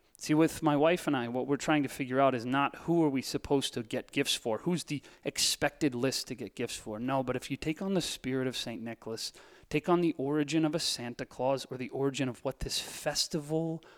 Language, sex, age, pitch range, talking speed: English, male, 30-49, 130-155 Hz, 240 wpm